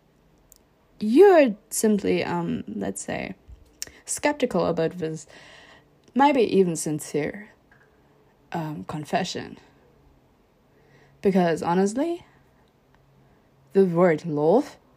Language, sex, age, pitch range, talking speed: English, female, 20-39, 160-205 Hz, 70 wpm